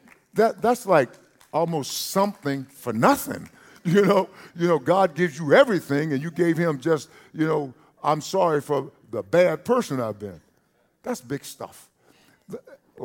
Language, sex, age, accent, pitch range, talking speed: English, male, 50-69, American, 120-165 Hz, 155 wpm